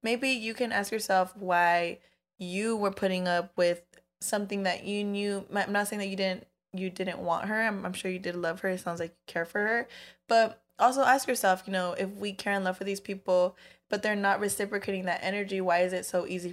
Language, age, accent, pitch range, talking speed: English, 20-39, American, 170-195 Hz, 230 wpm